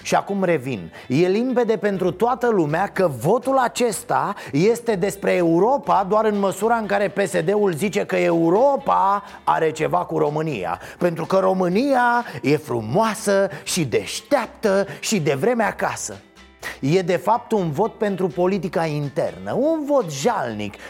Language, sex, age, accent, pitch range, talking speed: Romanian, male, 30-49, native, 165-225 Hz, 140 wpm